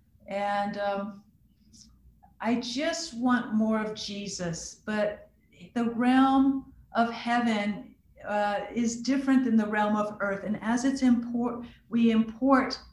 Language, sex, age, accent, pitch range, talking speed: English, female, 50-69, American, 200-240 Hz, 125 wpm